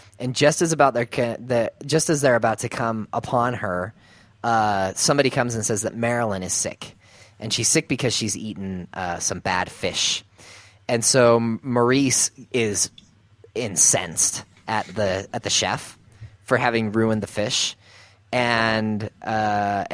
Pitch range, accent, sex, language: 105-125 Hz, American, male, English